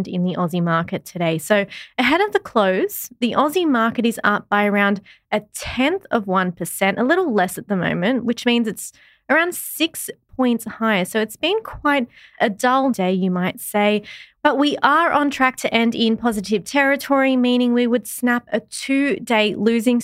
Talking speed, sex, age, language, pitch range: 185 wpm, female, 20-39, English, 195-255 Hz